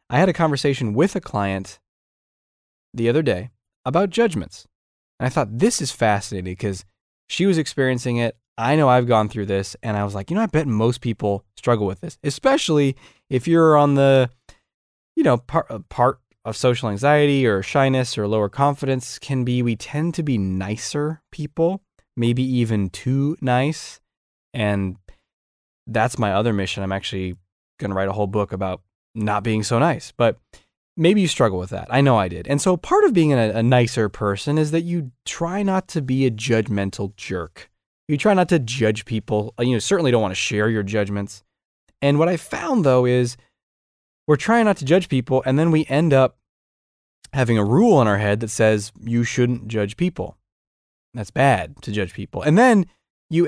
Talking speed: 185 wpm